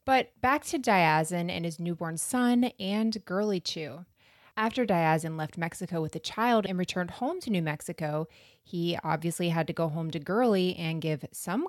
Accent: American